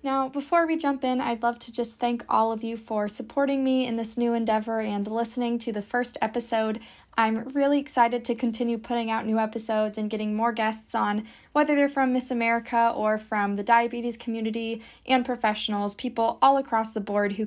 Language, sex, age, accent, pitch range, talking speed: English, female, 20-39, American, 220-260 Hz, 200 wpm